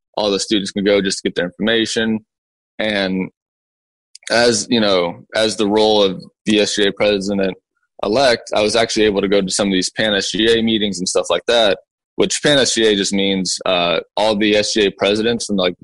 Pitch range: 95-110 Hz